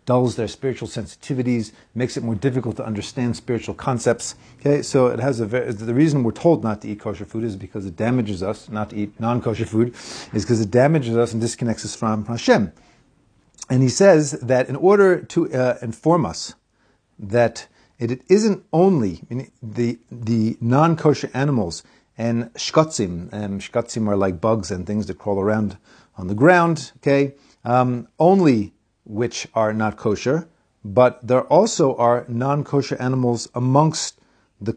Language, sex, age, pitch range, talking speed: English, male, 40-59, 110-140 Hz, 165 wpm